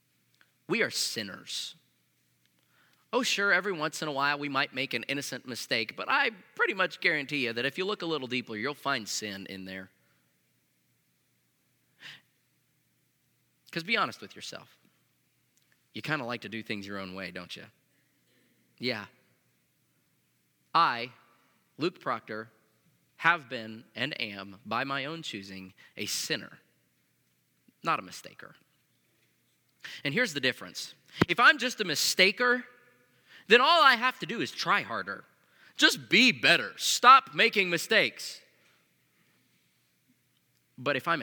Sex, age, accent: male, 30-49, American